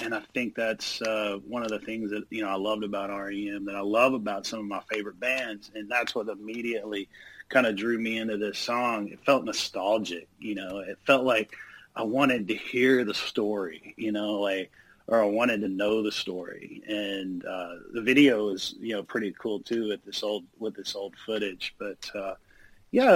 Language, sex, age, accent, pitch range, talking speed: English, male, 30-49, American, 105-120 Hz, 210 wpm